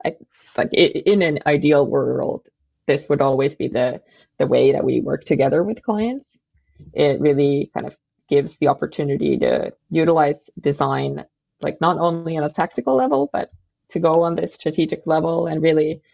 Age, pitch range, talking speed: 20-39, 145-170 Hz, 170 wpm